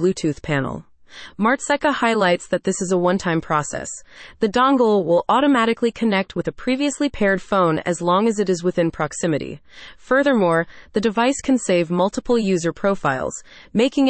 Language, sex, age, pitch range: English, female, 30-49, 170-230 Hz